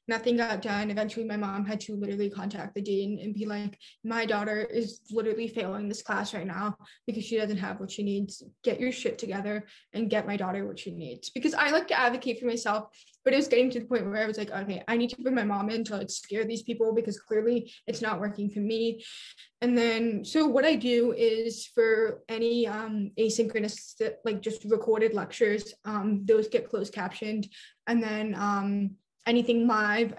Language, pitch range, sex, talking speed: English, 210-235 Hz, female, 205 wpm